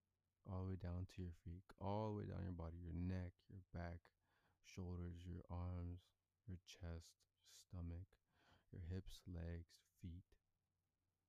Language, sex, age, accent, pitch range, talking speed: English, male, 20-39, American, 90-95 Hz, 145 wpm